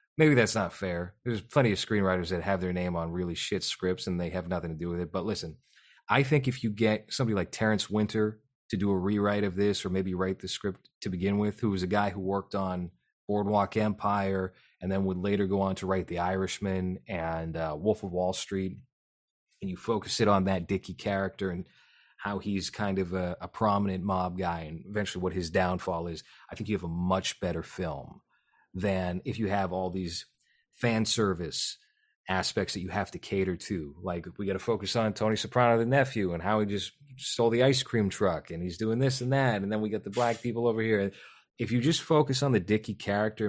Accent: American